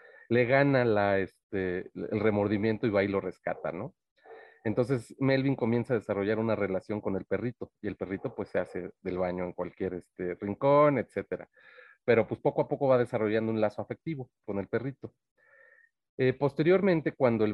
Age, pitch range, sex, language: 40-59, 95-130 Hz, male, Spanish